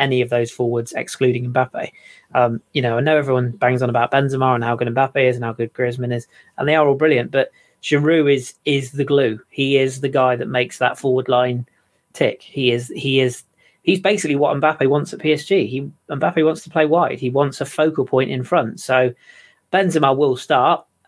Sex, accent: male, British